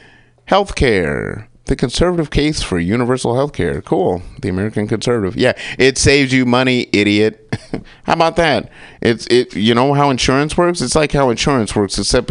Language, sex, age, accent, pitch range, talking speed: English, male, 30-49, American, 95-135 Hz, 160 wpm